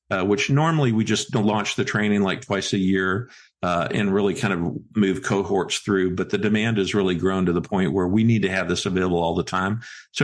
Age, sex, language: 50-69, male, English